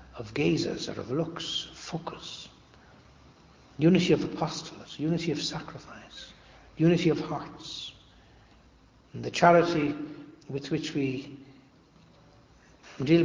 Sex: male